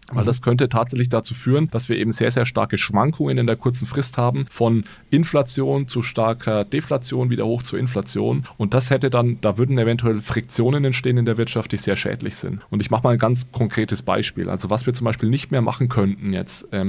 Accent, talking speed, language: German, 215 wpm, German